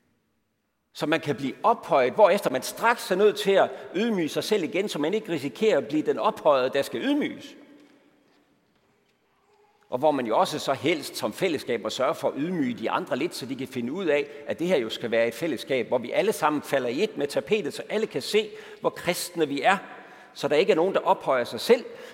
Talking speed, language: 230 wpm, Danish